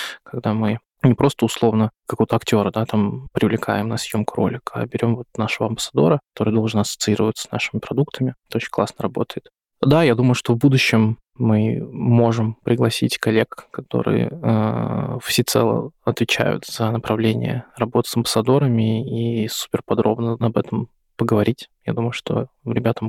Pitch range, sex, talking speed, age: 110-125 Hz, male, 145 wpm, 20-39